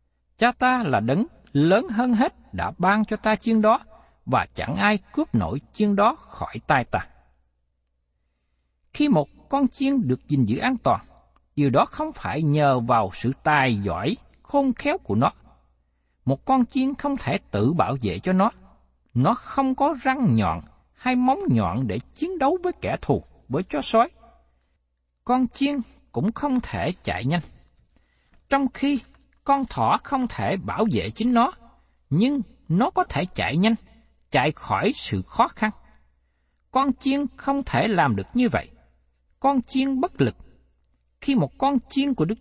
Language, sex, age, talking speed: Vietnamese, male, 60-79, 165 wpm